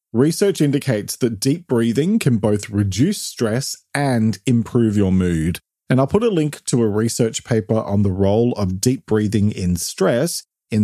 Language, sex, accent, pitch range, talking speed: English, male, Australian, 105-140 Hz, 170 wpm